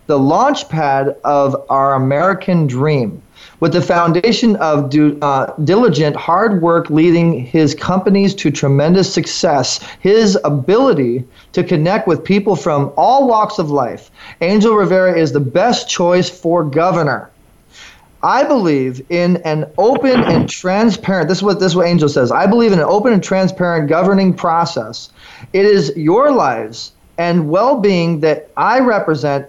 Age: 30-49